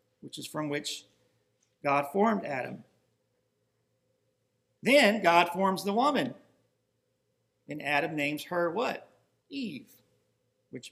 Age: 50-69